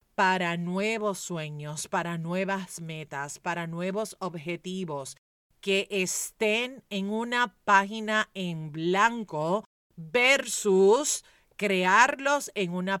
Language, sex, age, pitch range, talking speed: Spanish, female, 40-59, 165-215 Hz, 90 wpm